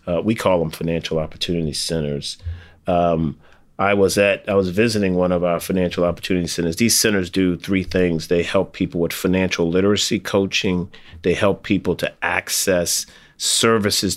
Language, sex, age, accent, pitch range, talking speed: English, male, 40-59, American, 80-95 Hz, 160 wpm